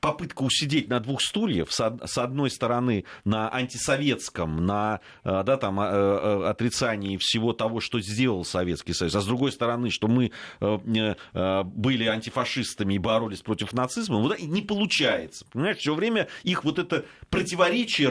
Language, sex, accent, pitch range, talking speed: Russian, male, native, 110-160 Hz, 125 wpm